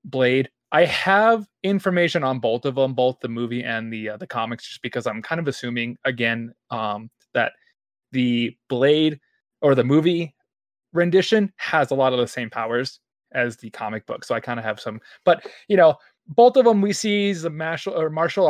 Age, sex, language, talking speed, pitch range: 20-39, male, English, 195 wpm, 120-155 Hz